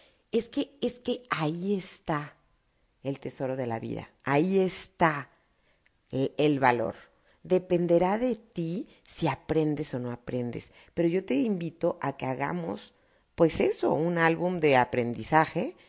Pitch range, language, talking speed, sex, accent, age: 120-170 Hz, Spanish, 140 wpm, female, Mexican, 40-59